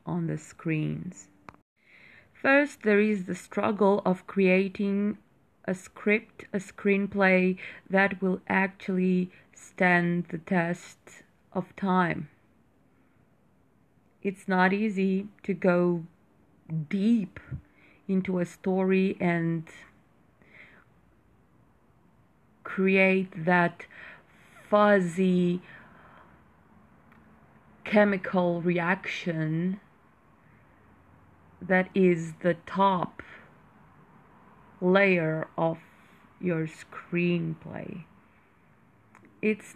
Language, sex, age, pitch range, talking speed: English, female, 30-49, 170-195 Hz, 70 wpm